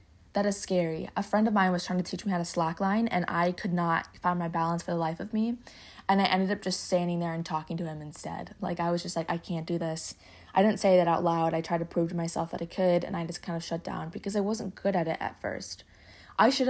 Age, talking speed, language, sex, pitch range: 20-39, 290 wpm, English, female, 170-200 Hz